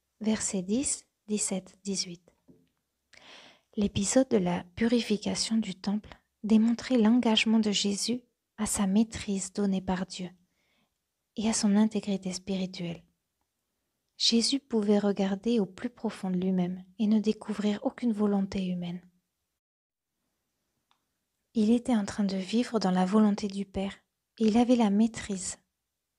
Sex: female